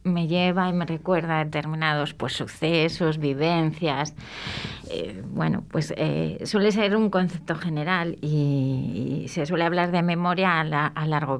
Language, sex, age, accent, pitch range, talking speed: Spanish, female, 30-49, Spanish, 150-180 Hz, 145 wpm